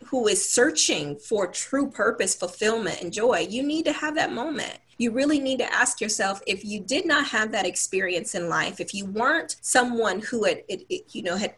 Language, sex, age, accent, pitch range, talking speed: English, female, 30-49, American, 195-270 Hz, 190 wpm